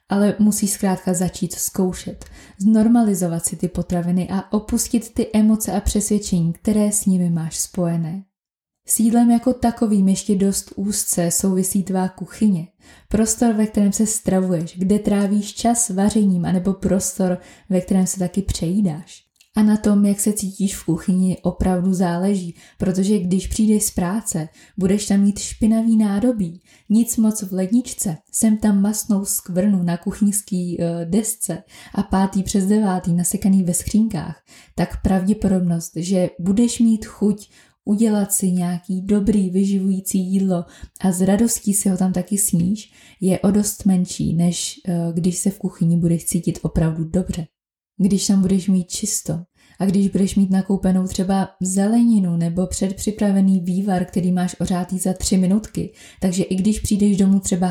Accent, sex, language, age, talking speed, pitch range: native, female, Czech, 20-39, 150 wpm, 180-205 Hz